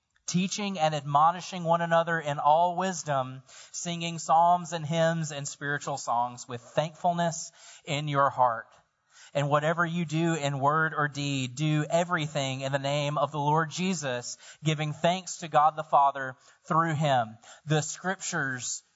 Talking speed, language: 150 wpm, English